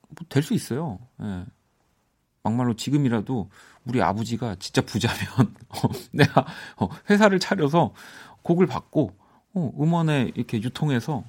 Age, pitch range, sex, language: 40-59, 95-140 Hz, male, Korean